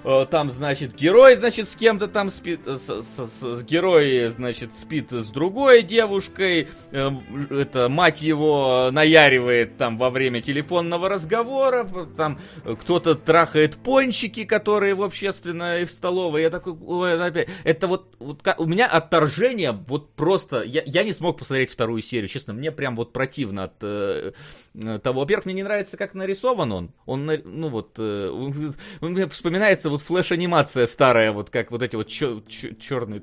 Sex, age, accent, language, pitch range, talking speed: male, 30-49, native, Russian, 115-175 Hz, 155 wpm